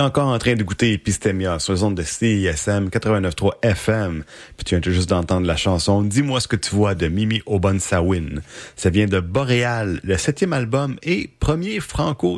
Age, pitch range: 30-49, 95-120 Hz